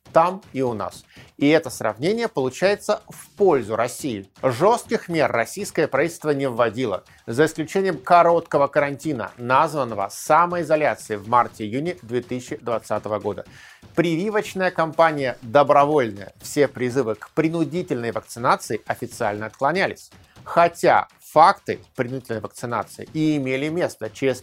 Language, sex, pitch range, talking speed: Russian, male, 120-160 Hz, 110 wpm